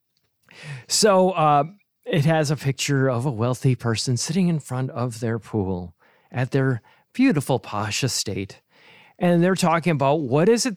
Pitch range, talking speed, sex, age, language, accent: 125-175 Hz, 155 wpm, male, 40-59, English, American